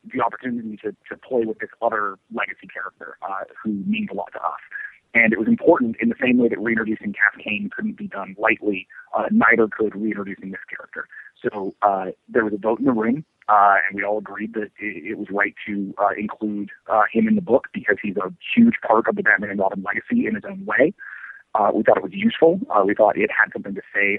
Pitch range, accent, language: 105-160 Hz, American, English